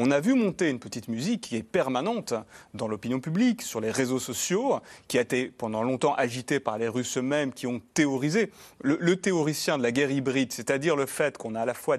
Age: 30-49